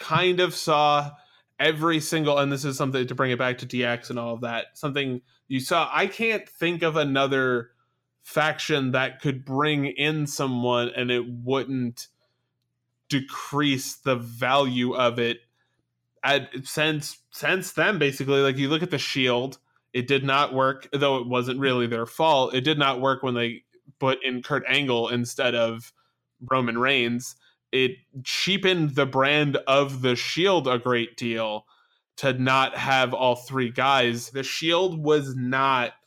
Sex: male